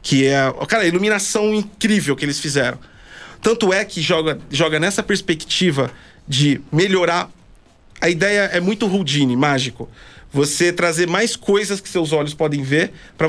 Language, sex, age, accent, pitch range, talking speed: Portuguese, male, 40-59, Brazilian, 145-205 Hz, 155 wpm